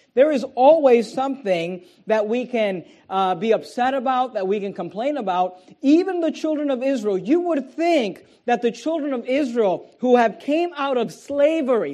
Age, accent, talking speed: 40-59, American, 175 wpm